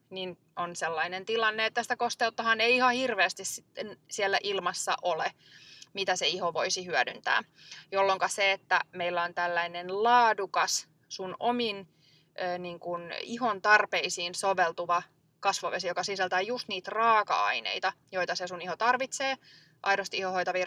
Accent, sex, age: native, female, 20-39